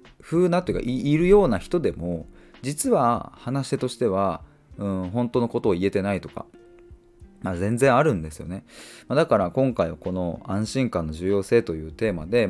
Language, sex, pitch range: Japanese, male, 95-135 Hz